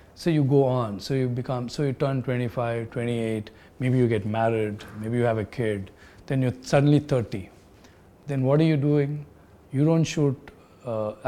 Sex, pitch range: male, 110-140 Hz